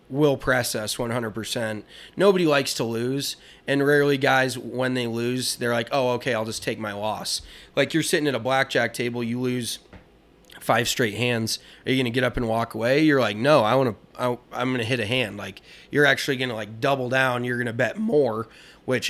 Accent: American